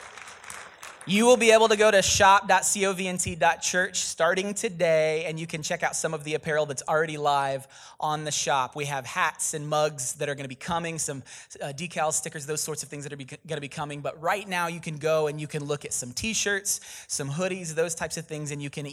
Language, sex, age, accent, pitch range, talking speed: English, male, 20-39, American, 150-180 Hz, 225 wpm